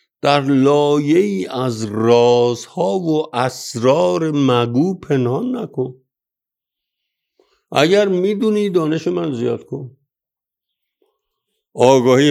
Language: Persian